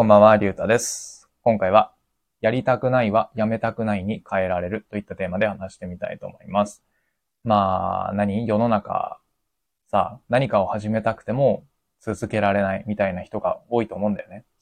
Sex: male